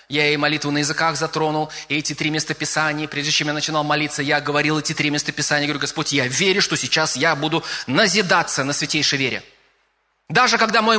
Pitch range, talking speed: 150-215 Hz, 190 wpm